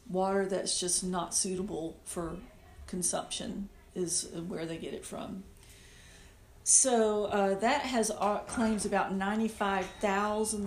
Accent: American